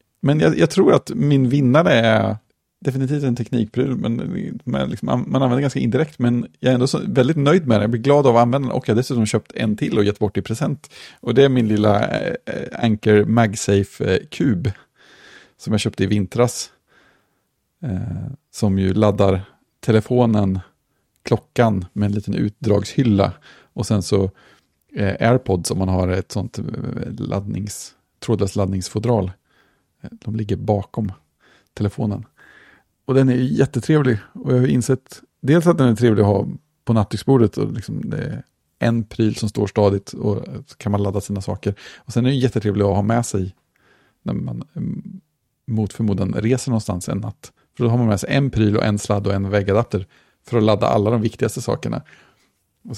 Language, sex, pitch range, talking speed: Swedish, male, 100-125 Hz, 180 wpm